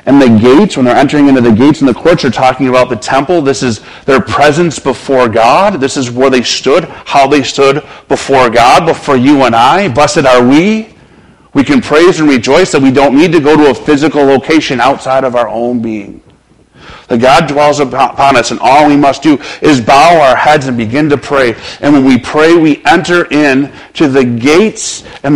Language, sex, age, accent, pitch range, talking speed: English, male, 40-59, American, 125-170 Hz, 215 wpm